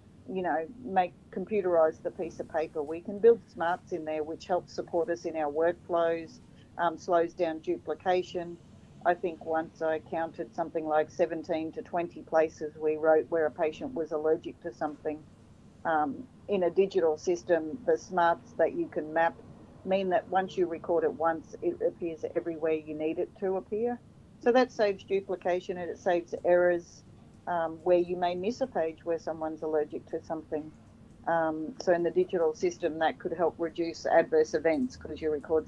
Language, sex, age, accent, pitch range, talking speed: English, female, 40-59, Australian, 160-180 Hz, 180 wpm